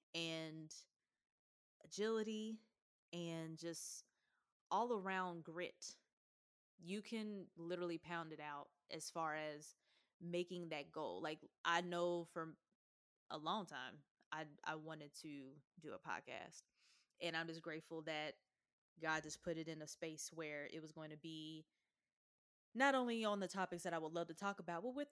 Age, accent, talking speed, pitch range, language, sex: 20-39, American, 155 wpm, 155-180 Hz, English, female